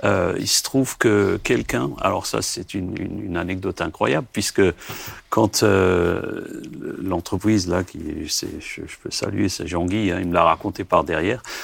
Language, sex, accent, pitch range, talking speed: French, male, French, 90-110 Hz, 180 wpm